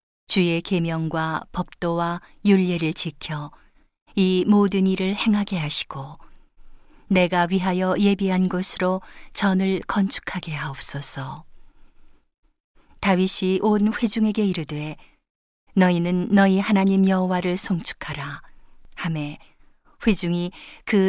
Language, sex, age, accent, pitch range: Korean, female, 40-59, native, 165-195 Hz